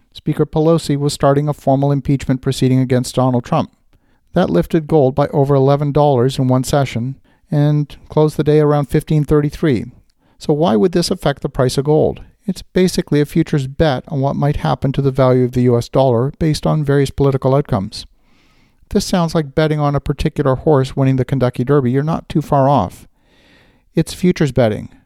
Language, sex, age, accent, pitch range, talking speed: English, male, 50-69, American, 130-155 Hz, 180 wpm